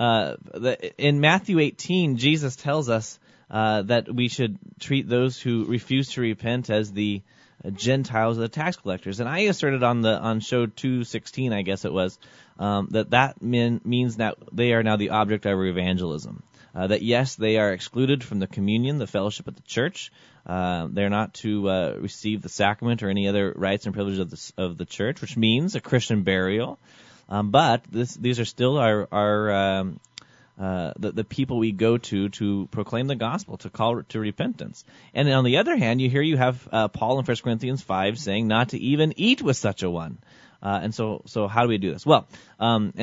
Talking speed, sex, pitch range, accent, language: 205 wpm, male, 100-125 Hz, American, English